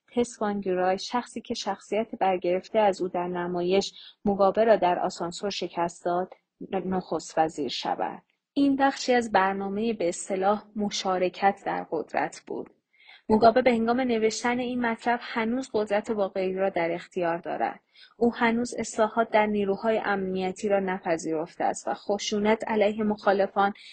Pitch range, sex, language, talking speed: 190-225 Hz, female, Persian, 135 wpm